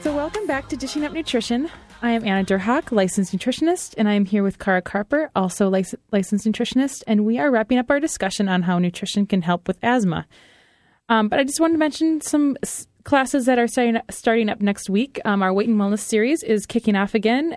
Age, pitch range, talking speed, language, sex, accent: 20-39, 195-245 Hz, 225 wpm, English, female, American